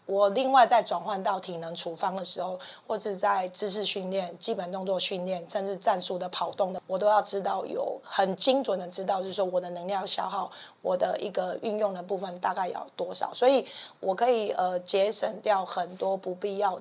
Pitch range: 185-215 Hz